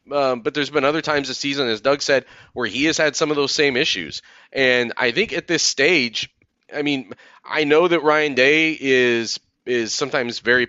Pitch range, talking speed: 125-160 Hz, 210 wpm